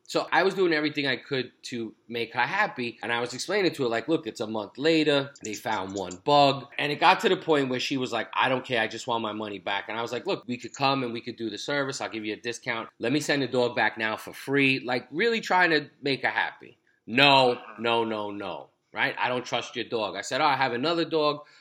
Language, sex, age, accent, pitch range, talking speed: English, male, 30-49, American, 105-135 Hz, 270 wpm